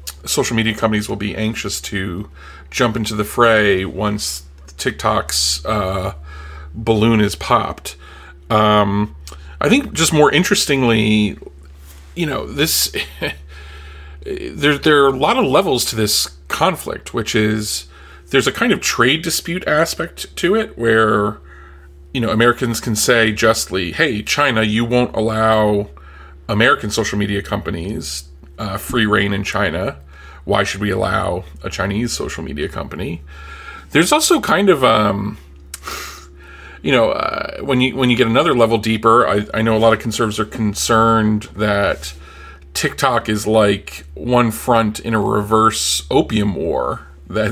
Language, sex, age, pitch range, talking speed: English, male, 40-59, 75-115 Hz, 145 wpm